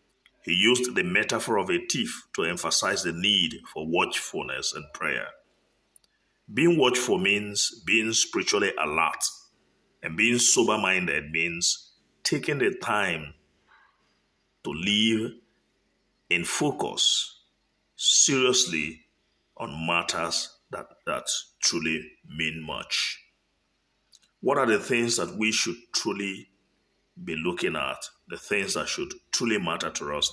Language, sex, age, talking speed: English, male, 50-69, 115 wpm